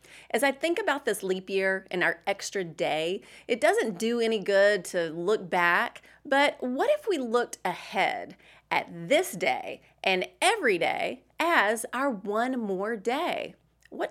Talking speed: 155 wpm